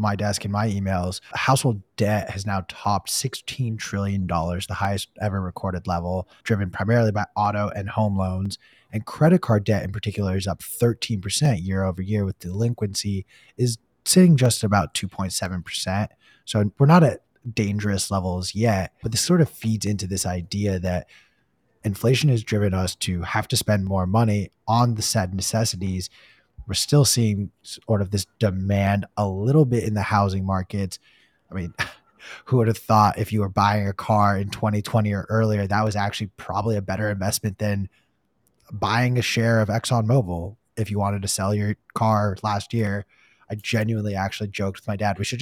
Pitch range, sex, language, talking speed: 95-110 Hz, male, English, 185 wpm